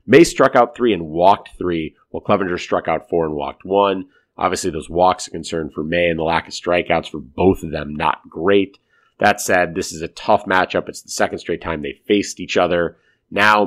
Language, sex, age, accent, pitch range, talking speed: English, male, 30-49, American, 85-115 Hz, 225 wpm